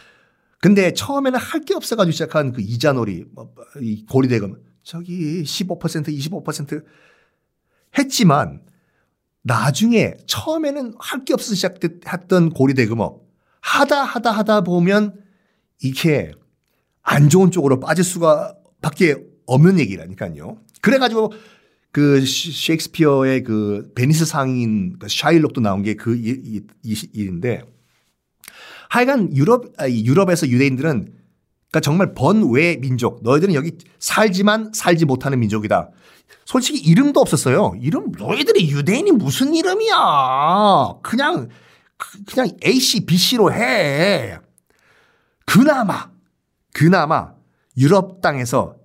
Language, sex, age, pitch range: Korean, male, 50-69, 130-200 Hz